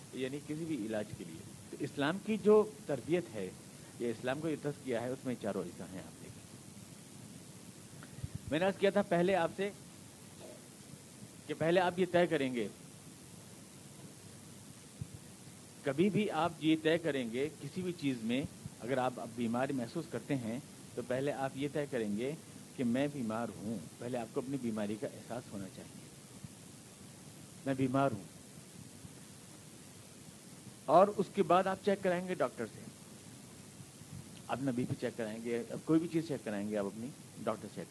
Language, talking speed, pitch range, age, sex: Urdu, 165 wpm, 120-170 Hz, 50-69, male